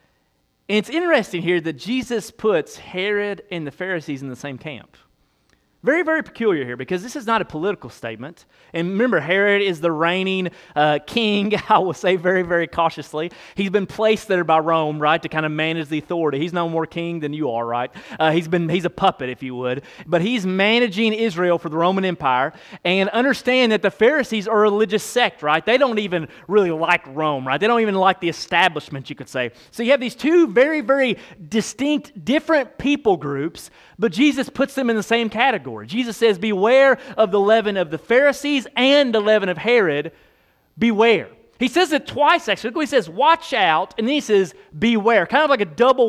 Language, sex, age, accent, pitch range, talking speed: English, male, 30-49, American, 165-240 Hz, 200 wpm